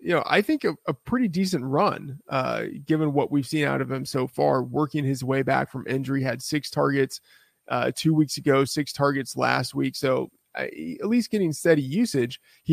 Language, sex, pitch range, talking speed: English, male, 135-180 Hz, 205 wpm